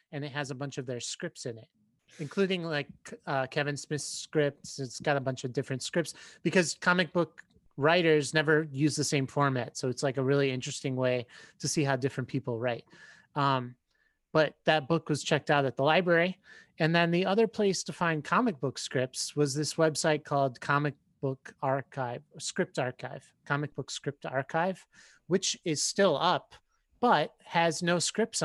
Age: 30-49